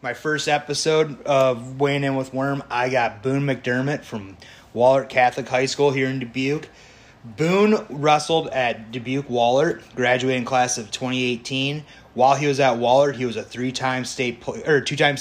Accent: American